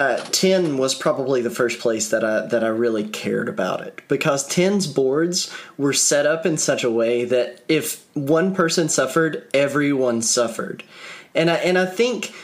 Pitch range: 120-160 Hz